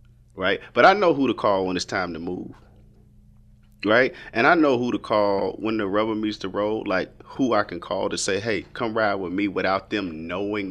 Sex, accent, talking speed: male, American, 225 wpm